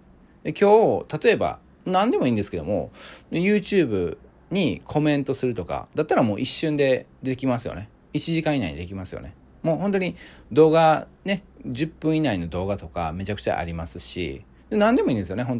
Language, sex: Japanese, male